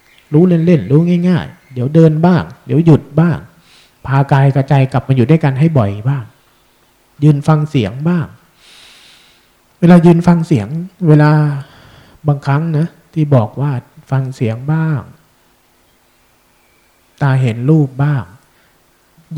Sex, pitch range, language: male, 125-155 Hz, Thai